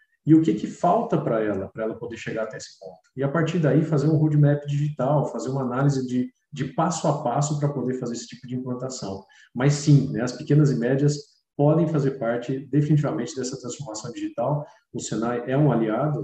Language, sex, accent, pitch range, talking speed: Portuguese, male, Brazilian, 120-150 Hz, 205 wpm